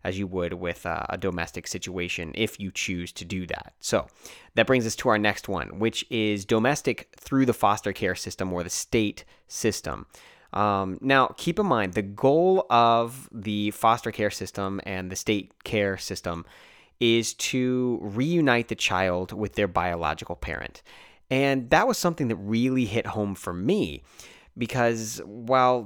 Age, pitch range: 30-49, 95-125 Hz